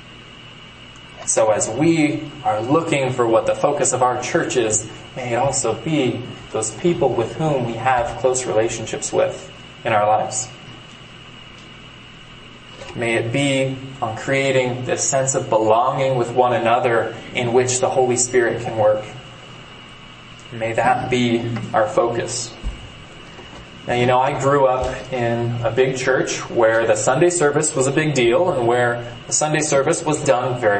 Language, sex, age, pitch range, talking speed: English, male, 20-39, 120-150 Hz, 155 wpm